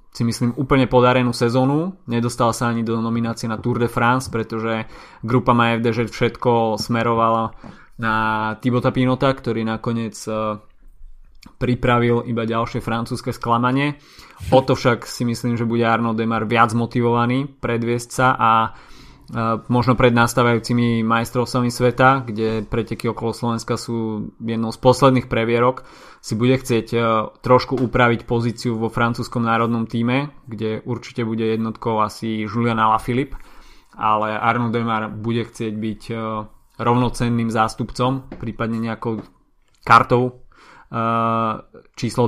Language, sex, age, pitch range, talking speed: Slovak, male, 20-39, 115-125 Hz, 120 wpm